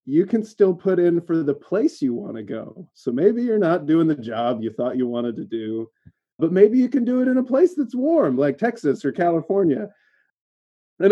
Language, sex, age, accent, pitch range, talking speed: English, male, 30-49, American, 120-170 Hz, 220 wpm